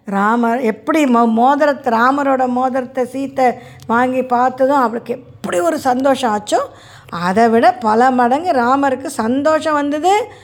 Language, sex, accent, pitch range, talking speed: Tamil, female, native, 215-275 Hz, 115 wpm